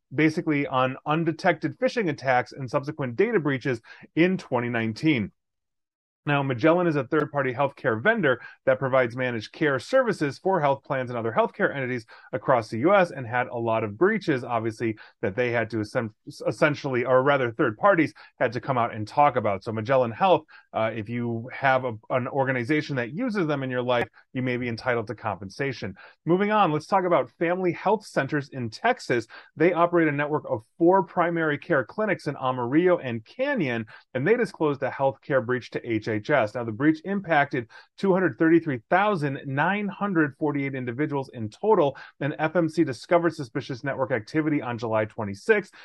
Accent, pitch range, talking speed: American, 125-165 Hz, 170 wpm